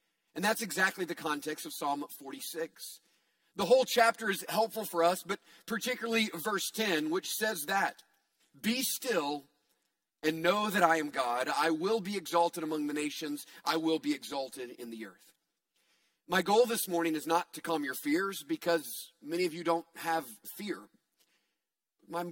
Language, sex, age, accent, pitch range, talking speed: English, male, 40-59, American, 155-180 Hz, 165 wpm